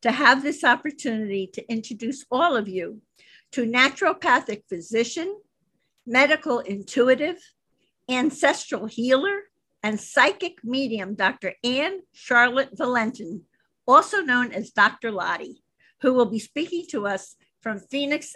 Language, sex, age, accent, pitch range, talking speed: English, female, 50-69, American, 220-280 Hz, 120 wpm